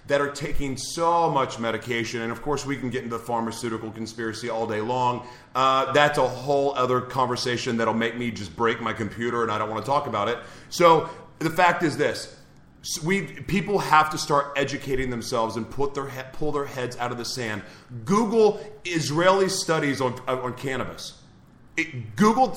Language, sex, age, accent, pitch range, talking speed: English, male, 30-49, American, 125-165 Hz, 185 wpm